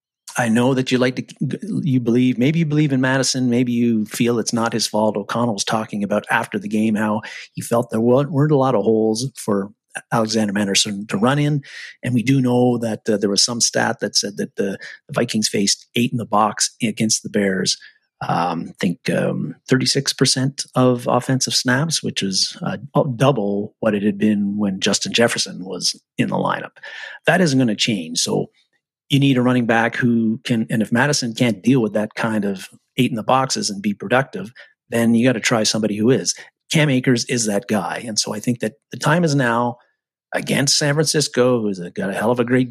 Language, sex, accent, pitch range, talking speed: English, male, American, 110-130 Hz, 210 wpm